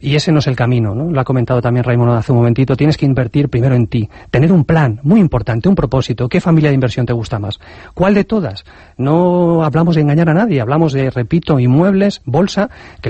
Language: Spanish